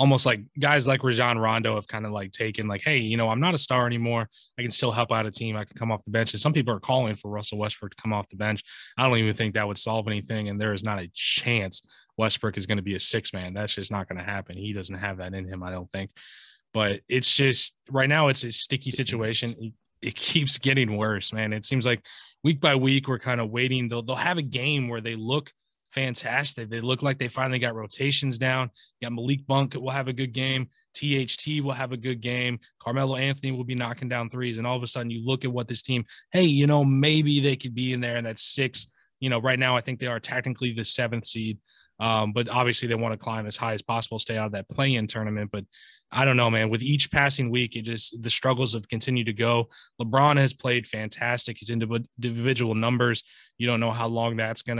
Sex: male